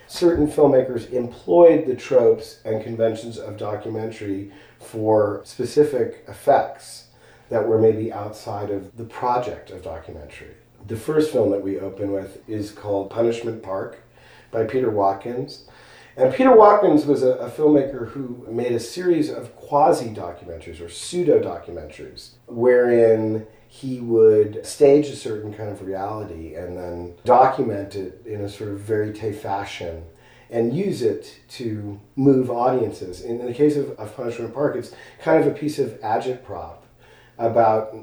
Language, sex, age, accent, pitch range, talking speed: English, male, 40-59, American, 105-135 Hz, 145 wpm